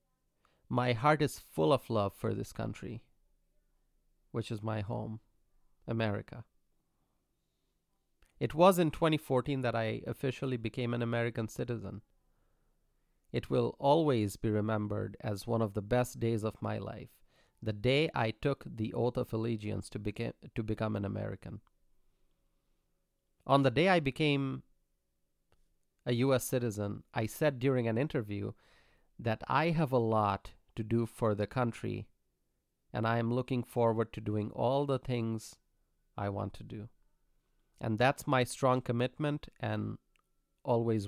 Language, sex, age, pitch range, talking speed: English, male, 30-49, 110-130 Hz, 140 wpm